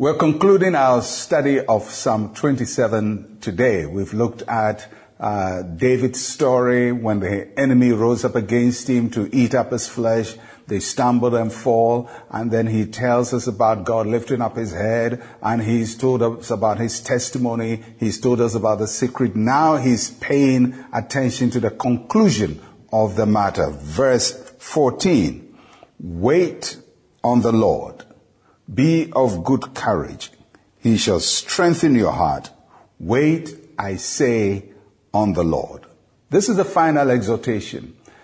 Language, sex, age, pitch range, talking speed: English, male, 50-69, 110-135 Hz, 140 wpm